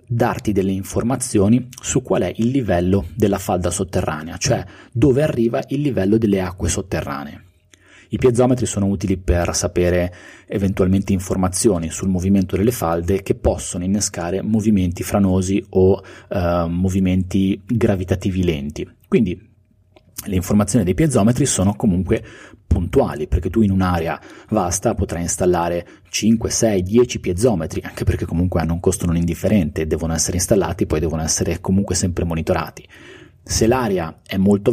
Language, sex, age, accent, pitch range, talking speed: Italian, male, 30-49, native, 90-110 Hz, 140 wpm